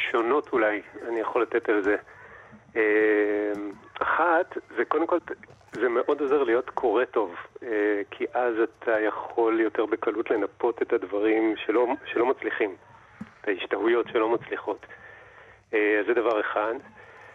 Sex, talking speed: male, 130 wpm